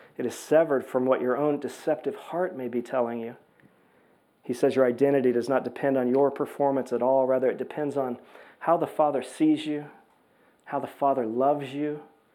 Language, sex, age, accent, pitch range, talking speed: English, male, 40-59, American, 120-140 Hz, 190 wpm